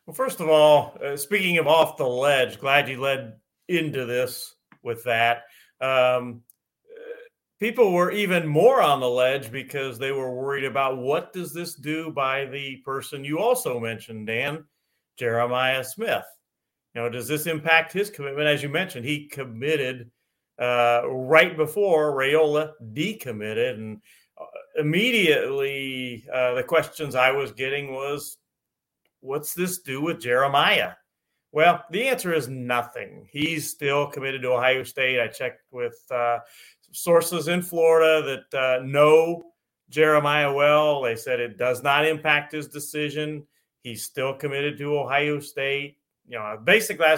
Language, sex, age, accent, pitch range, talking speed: English, male, 50-69, American, 130-160 Hz, 145 wpm